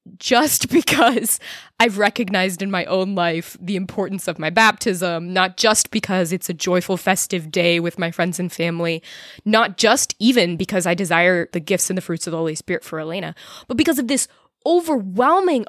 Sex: female